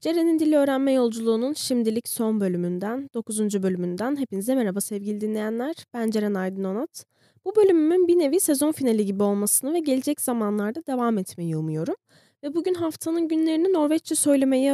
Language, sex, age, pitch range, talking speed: Turkish, female, 10-29, 200-275 Hz, 150 wpm